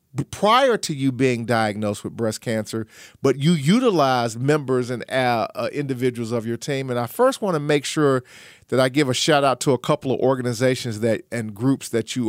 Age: 40-59